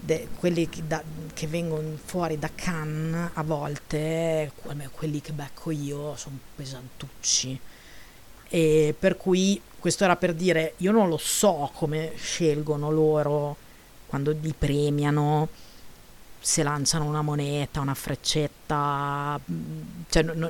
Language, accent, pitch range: Italian, native, 145-170 Hz